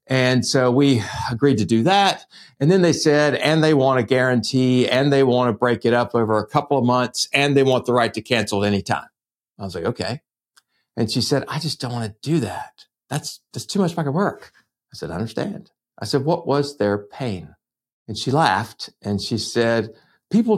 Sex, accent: male, American